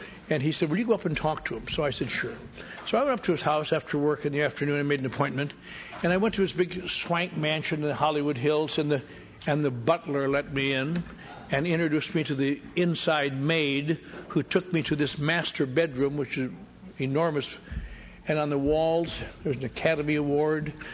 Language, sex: English, male